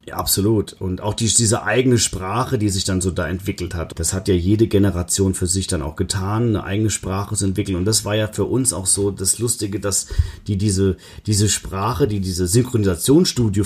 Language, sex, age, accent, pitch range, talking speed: German, male, 40-59, German, 95-115 Hz, 210 wpm